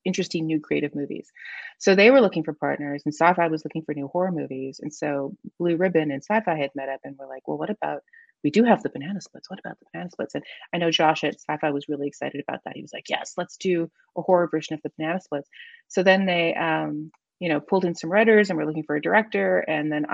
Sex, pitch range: female, 150-185 Hz